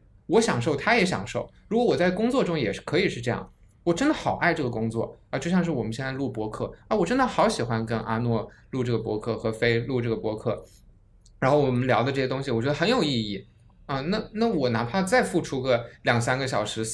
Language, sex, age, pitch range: Chinese, male, 20-39, 115-175 Hz